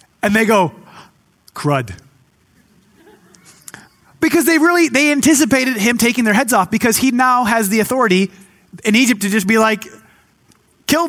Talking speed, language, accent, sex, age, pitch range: 145 wpm, English, American, male, 30-49, 195-240 Hz